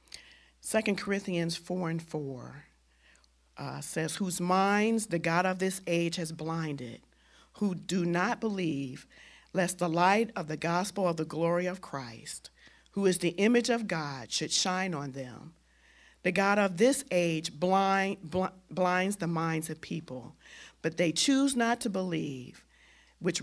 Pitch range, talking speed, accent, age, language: 145-180 Hz, 145 wpm, American, 50-69, English